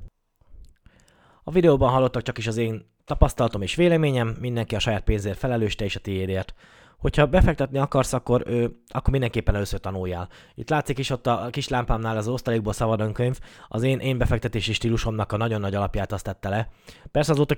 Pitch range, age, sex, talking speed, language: 105-130 Hz, 20-39, male, 175 wpm, Hungarian